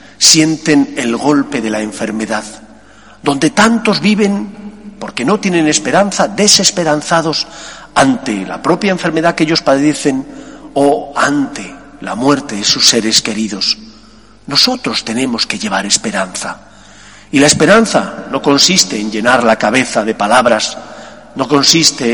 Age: 40-59